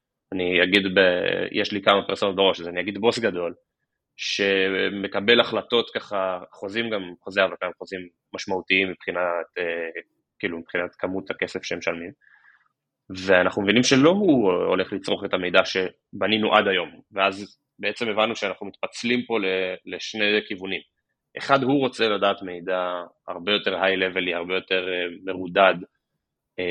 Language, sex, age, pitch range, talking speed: English, male, 20-39, 90-110 Hz, 135 wpm